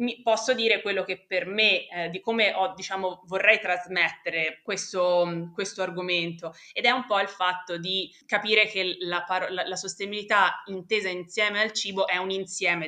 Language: Italian